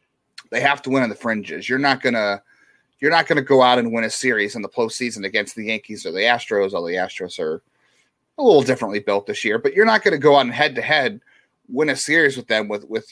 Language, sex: English, male